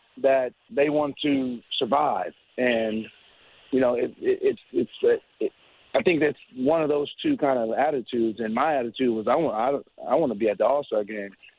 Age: 40-59